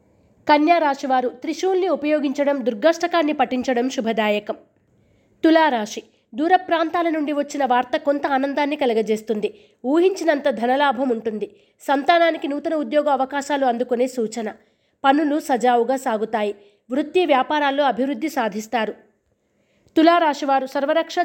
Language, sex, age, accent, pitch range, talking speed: Telugu, female, 20-39, native, 240-305 Hz, 95 wpm